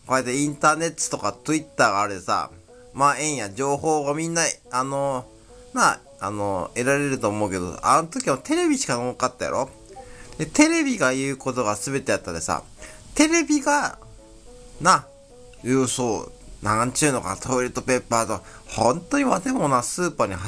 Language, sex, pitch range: Japanese, male, 110-150 Hz